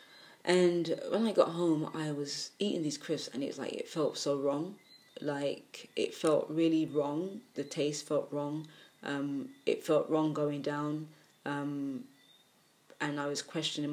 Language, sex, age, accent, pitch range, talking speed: English, female, 20-39, British, 140-160 Hz, 160 wpm